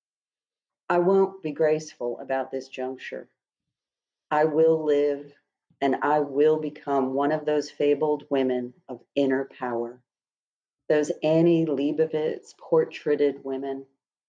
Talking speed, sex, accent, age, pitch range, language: 115 wpm, female, American, 40-59, 135-155 Hz, English